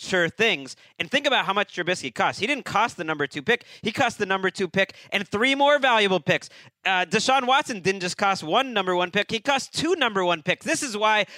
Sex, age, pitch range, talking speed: male, 30-49, 150-205 Hz, 245 wpm